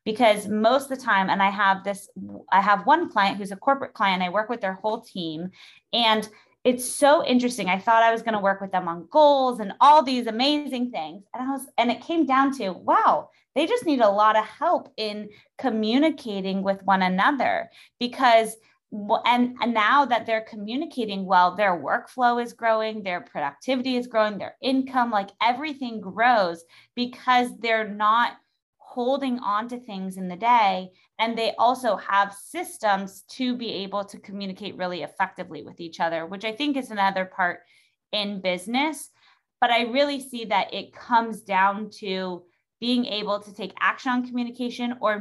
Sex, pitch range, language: female, 195-250 Hz, English